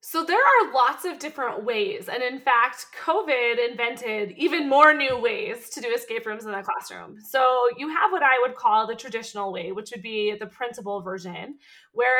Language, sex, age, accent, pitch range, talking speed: English, female, 20-39, American, 215-300 Hz, 195 wpm